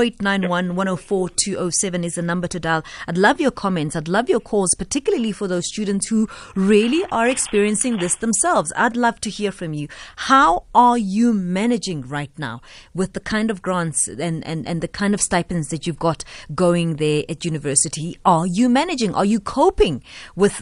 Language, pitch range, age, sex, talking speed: English, 180-255 Hz, 30-49, female, 180 wpm